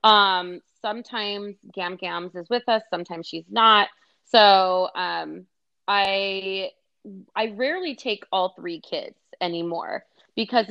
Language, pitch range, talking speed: English, 175-215 Hz, 120 wpm